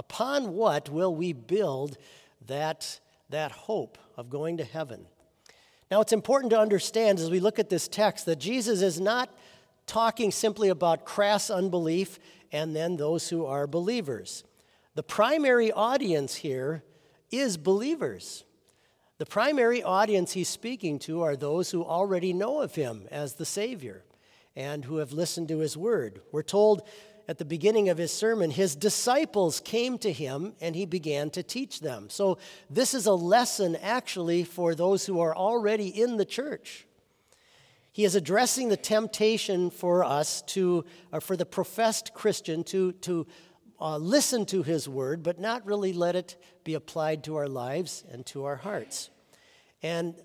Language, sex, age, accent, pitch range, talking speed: English, male, 50-69, American, 160-210 Hz, 160 wpm